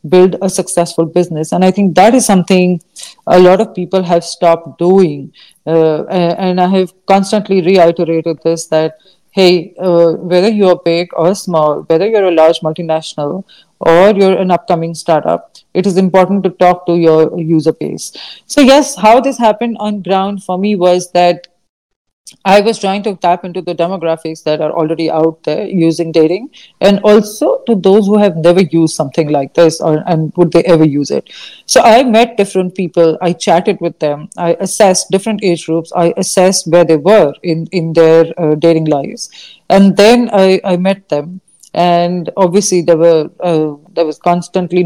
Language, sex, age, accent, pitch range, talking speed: English, female, 40-59, Indian, 165-190 Hz, 180 wpm